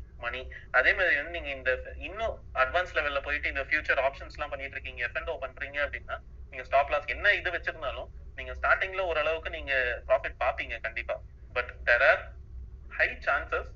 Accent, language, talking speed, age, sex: native, Tamil, 110 wpm, 30-49, male